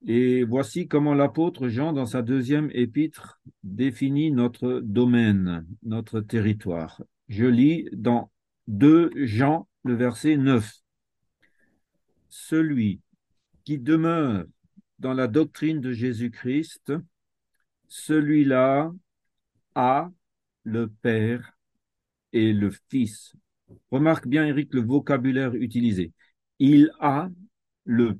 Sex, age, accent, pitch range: male, 50-69, French, 115-150 Hz